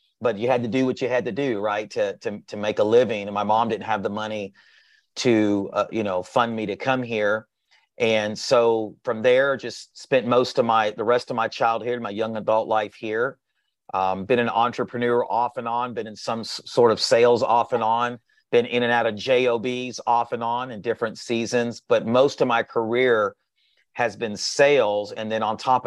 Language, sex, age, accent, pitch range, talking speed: English, male, 40-59, American, 110-125 Hz, 215 wpm